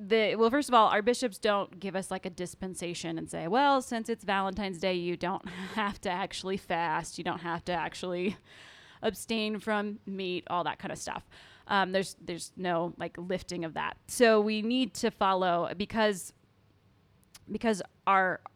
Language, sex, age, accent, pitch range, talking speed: English, female, 20-39, American, 170-220 Hz, 180 wpm